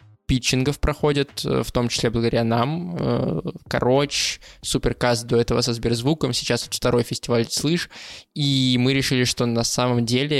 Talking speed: 140 wpm